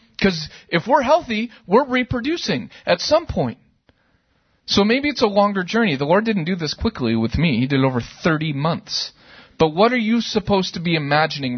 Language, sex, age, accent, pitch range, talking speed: English, male, 40-59, American, 155-235 Hz, 190 wpm